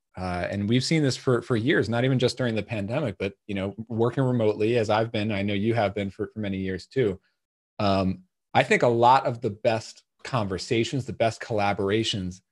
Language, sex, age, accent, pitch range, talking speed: English, male, 40-59, American, 100-125 Hz, 210 wpm